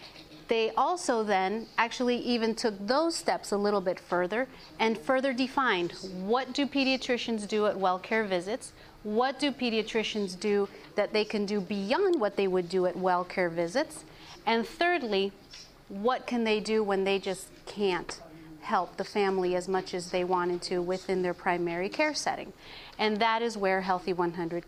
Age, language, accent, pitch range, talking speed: 30-49, English, American, 185-225 Hz, 170 wpm